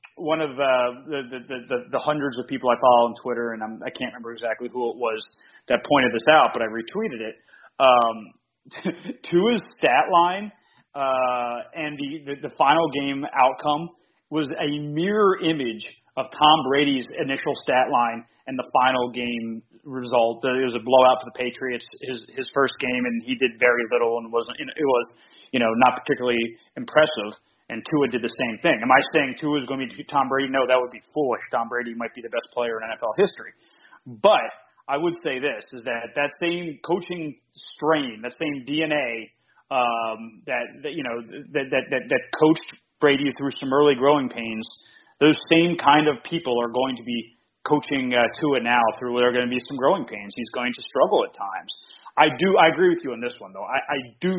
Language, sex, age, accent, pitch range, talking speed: English, male, 30-49, American, 120-150 Hz, 205 wpm